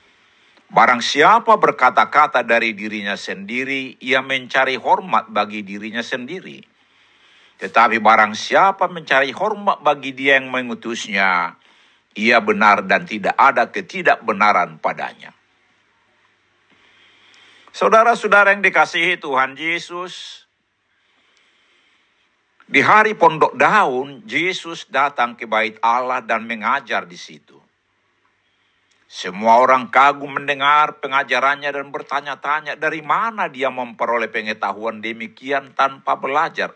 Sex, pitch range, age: male, 115-155 Hz, 60-79